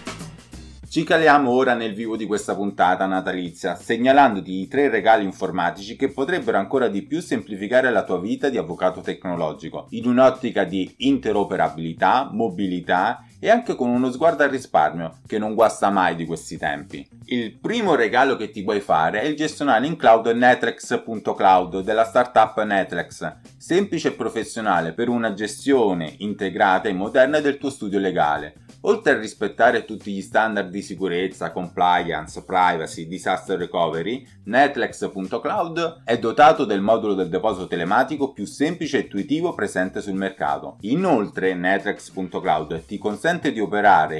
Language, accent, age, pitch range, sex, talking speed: Italian, native, 30-49, 95-135 Hz, male, 145 wpm